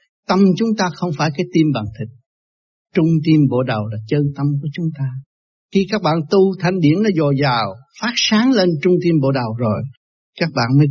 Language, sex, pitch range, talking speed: Vietnamese, male, 135-170 Hz, 215 wpm